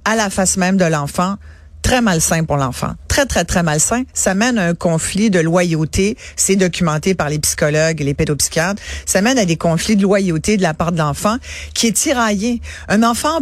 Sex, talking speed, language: female, 205 wpm, French